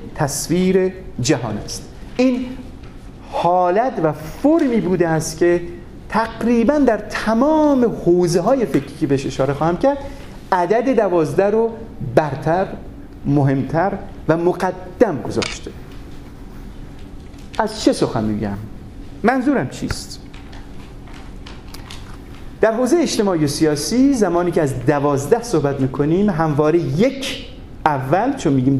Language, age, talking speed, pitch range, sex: Persian, 40-59, 105 wpm, 150-235 Hz, male